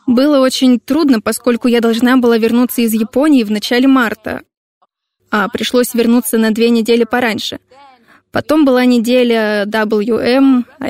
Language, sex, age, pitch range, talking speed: Russian, female, 20-39, 225-250 Hz, 140 wpm